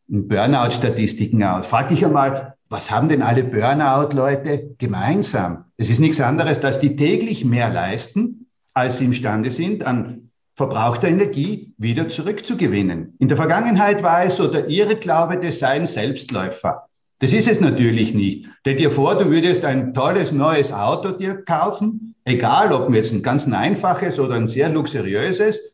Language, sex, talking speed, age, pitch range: German, male, 155 wpm, 50-69, 120-175 Hz